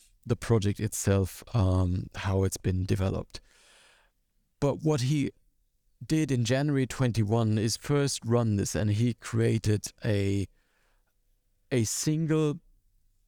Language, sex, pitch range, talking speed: English, male, 100-125 Hz, 115 wpm